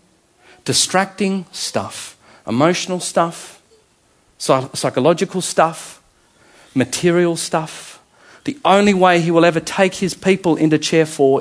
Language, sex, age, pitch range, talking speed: English, male, 40-59, 135-175 Hz, 105 wpm